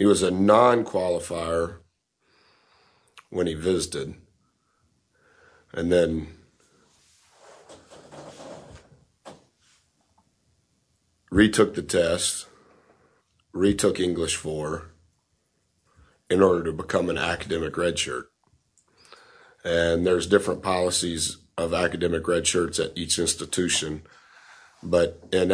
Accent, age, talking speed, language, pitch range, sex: American, 50-69, 80 wpm, English, 80-95 Hz, male